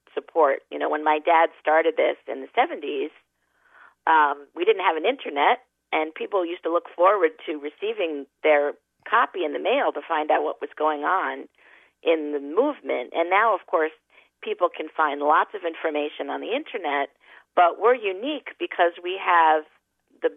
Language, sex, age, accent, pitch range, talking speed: English, female, 50-69, American, 155-190 Hz, 175 wpm